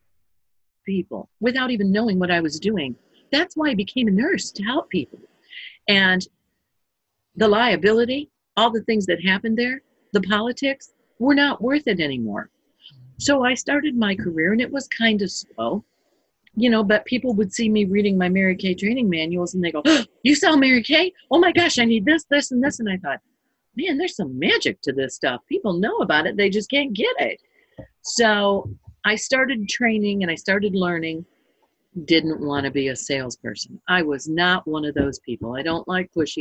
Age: 50-69